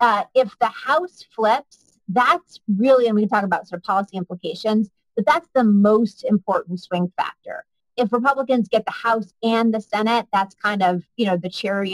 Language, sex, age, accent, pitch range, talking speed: English, female, 30-49, American, 185-225 Hz, 190 wpm